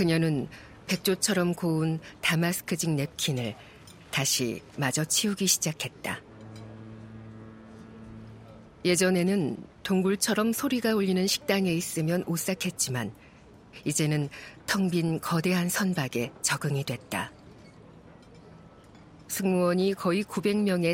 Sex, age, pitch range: female, 50-69, 140-190 Hz